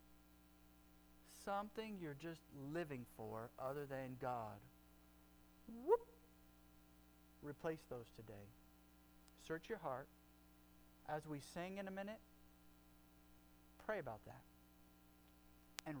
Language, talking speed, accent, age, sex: English, 95 wpm, American, 50-69, male